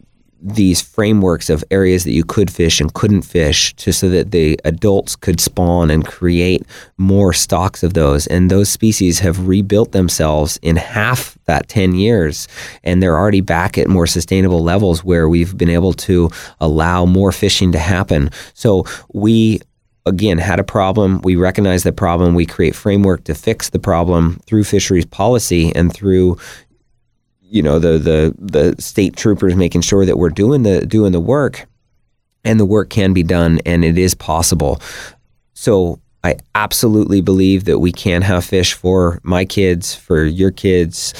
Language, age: English, 30-49